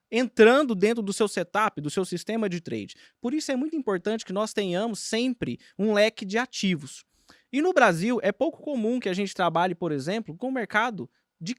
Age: 20-39